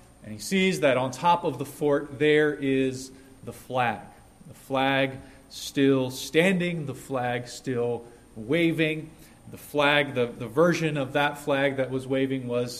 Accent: American